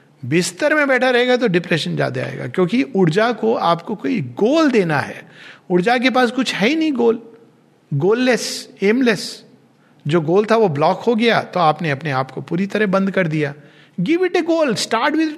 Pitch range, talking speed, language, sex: 155-220 Hz, 190 wpm, Hindi, male